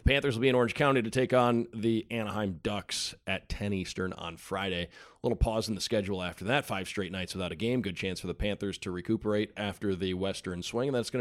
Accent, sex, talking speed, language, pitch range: American, male, 245 wpm, English, 95-125 Hz